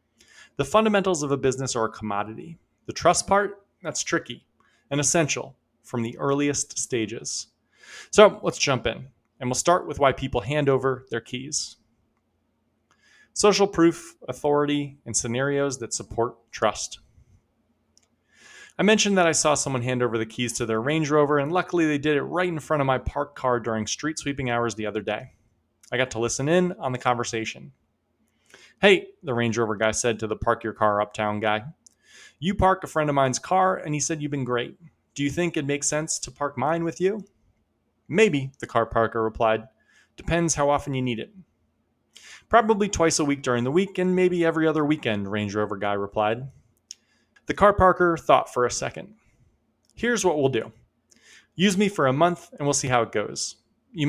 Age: 30-49